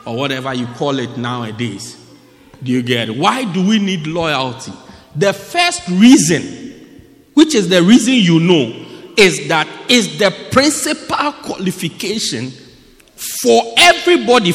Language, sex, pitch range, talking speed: English, male, 180-275 Hz, 130 wpm